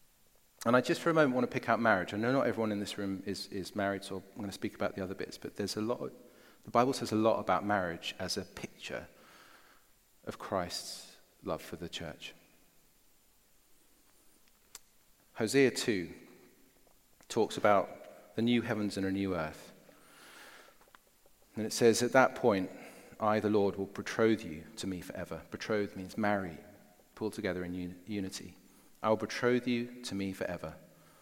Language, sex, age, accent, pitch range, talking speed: English, male, 40-59, British, 95-115 Hz, 175 wpm